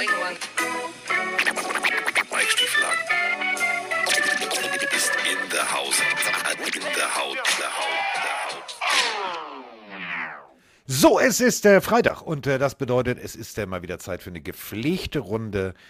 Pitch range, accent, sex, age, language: 90-135 Hz, German, male, 50-69, German